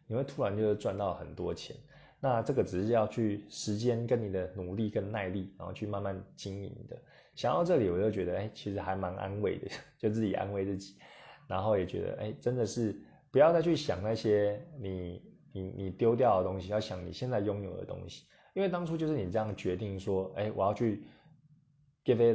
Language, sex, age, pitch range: English, male, 20-39, 95-125 Hz